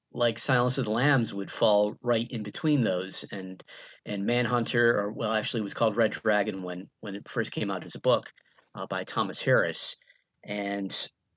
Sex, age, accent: male, 40-59, American